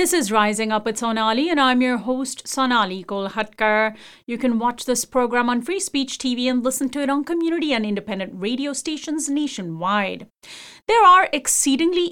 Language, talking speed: English, 175 wpm